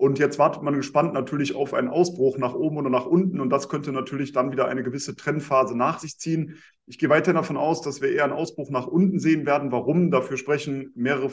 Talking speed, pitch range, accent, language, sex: 235 wpm, 130-155 Hz, German, German, male